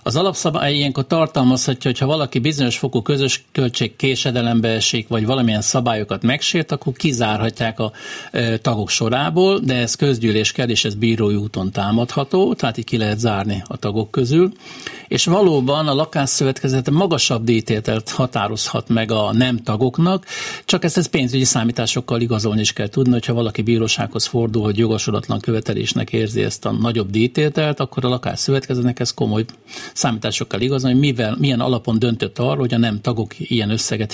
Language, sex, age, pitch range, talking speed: Hungarian, male, 60-79, 115-145 Hz, 155 wpm